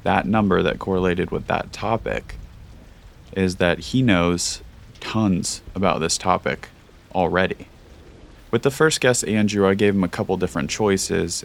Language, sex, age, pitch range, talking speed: English, male, 30-49, 90-105 Hz, 145 wpm